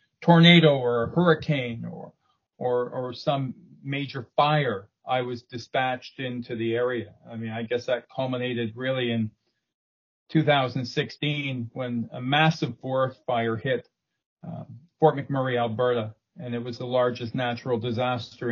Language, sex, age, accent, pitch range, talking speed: English, male, 40-59, American, 120-130 Hz, 135 wpm